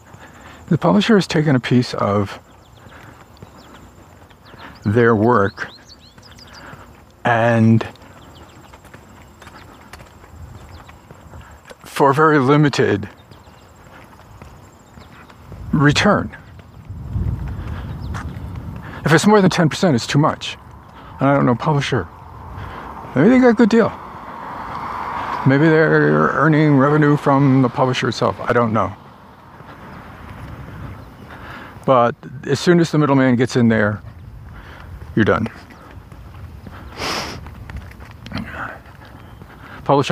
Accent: American